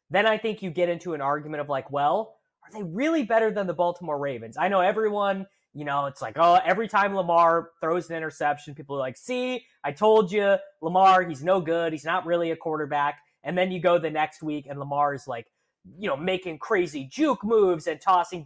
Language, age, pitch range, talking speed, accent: English, 20-39, 145-185 Hz, 220 wpm, American